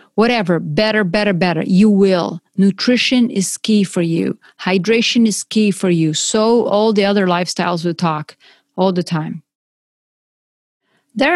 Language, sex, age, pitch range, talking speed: English, female, 30-49, 185-230 Hz, 145 wpm